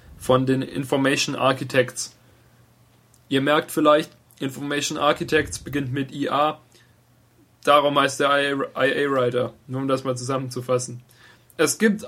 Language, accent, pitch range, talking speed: German, German, 120-145 Hz, 125 wpm